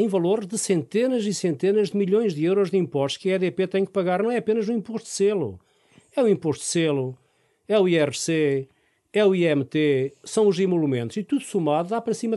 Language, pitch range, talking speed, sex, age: Portuguese, 150-210 Hz, 240 wpm, male, 50-69